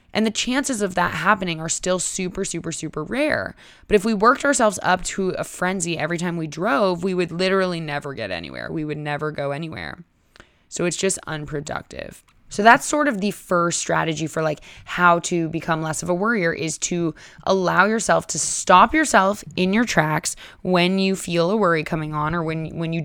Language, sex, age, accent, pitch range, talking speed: English, female, 20-39, American, 160-190 Hz, 200 wpm